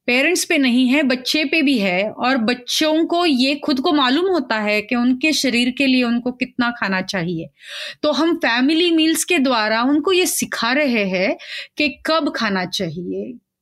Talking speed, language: 180 wpm, Hindi